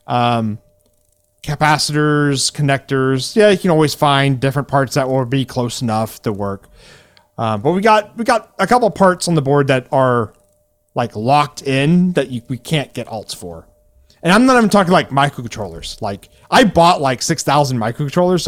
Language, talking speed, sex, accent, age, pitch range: English, 175 wpm, male, American, 30-49, 110-155 Hz